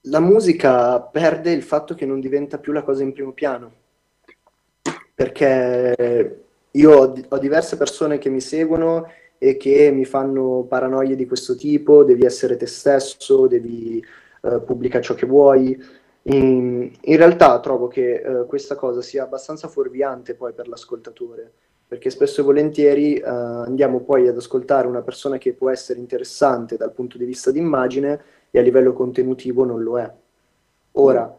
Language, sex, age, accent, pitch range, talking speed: Italian, male, 20-39, native, 125-165 Hz, 165 wpm